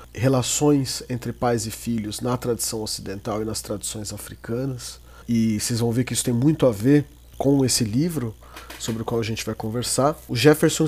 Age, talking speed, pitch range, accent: 40-59, 190 wpm, 120-145 Hz, Brazilian